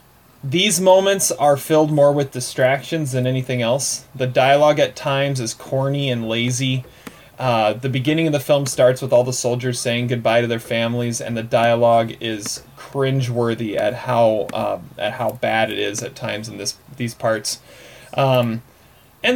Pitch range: 120-140 Hz